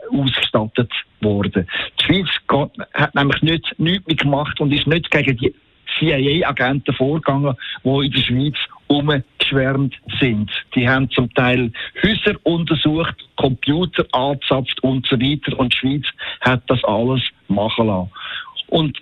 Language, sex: German, male